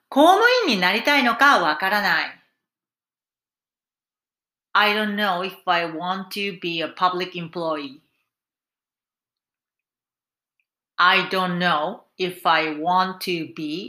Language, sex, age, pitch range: Japanese, female, 40-59, 165-210 Hz